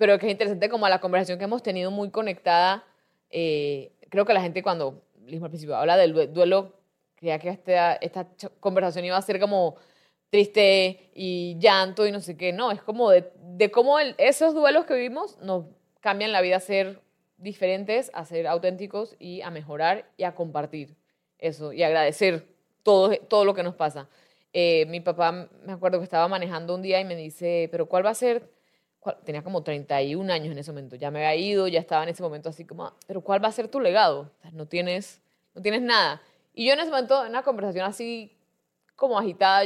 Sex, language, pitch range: female, English, 170-205 Hz